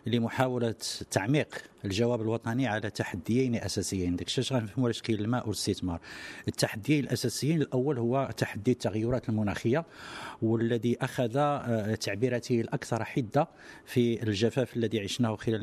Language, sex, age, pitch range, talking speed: English, male, 50-69, 110-125 Hz, 90 wpm